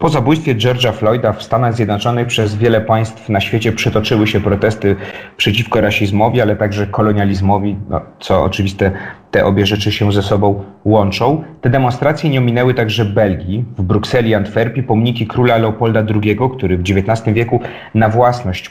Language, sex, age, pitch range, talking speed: Polish, male, 30-49, 105-120 Hz, 160 wpm